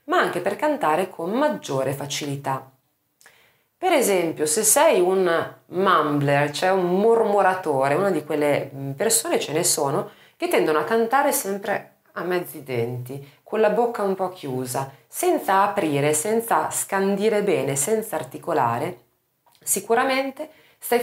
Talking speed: 130 wpm